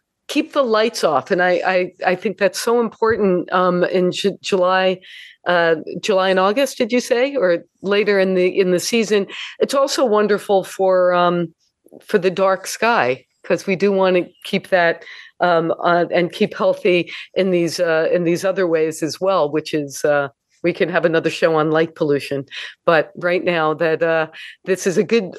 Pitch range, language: 175-225 Hz, English